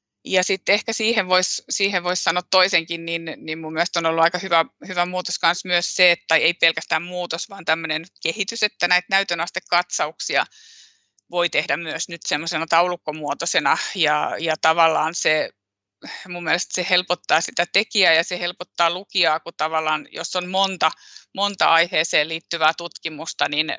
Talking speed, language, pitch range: 150 wpm, Finnish, 165-190 Hz